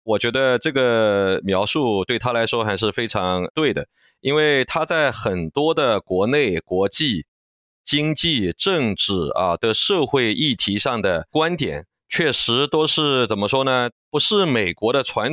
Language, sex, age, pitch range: Chinese, male, 30-49, 110-150 Hz